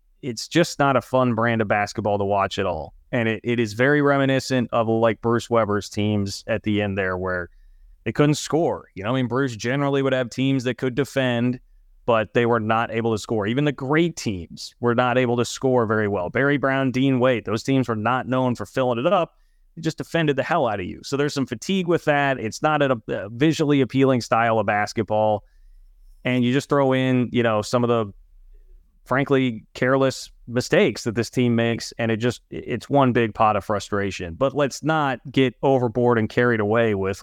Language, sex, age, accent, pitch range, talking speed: English, male, 30-49, American, 105-130 Hz, 215 wpm